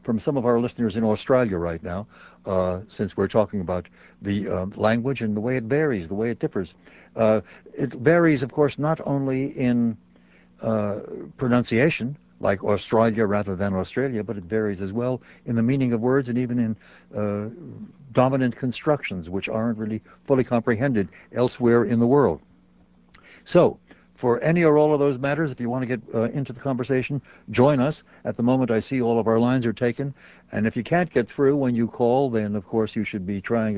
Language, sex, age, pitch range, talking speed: English, male, 60-79, 100-125 Hz, 200 wpm